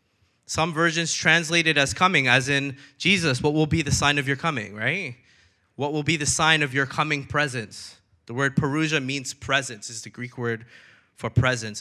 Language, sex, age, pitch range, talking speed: English, male, 20-39, 125-165 Hz, 195 wpm